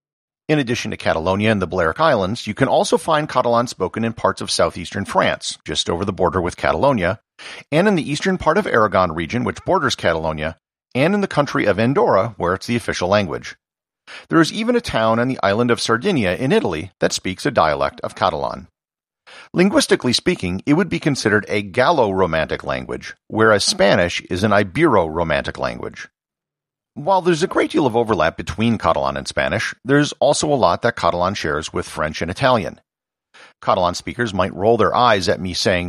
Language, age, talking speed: English, 50-69, 185 wpm